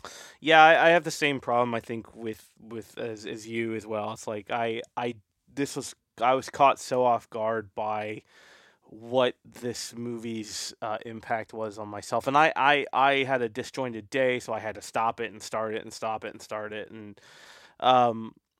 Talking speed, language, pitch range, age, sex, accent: 200 wpm, English, 110-130 Hz, 20-39, male, American